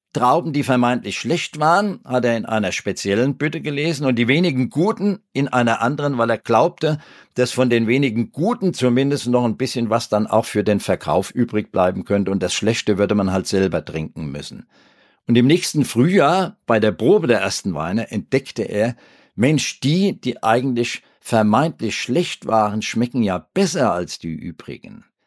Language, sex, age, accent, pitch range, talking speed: German, male, 50-69, German, 110-145 Hz, 175 wpm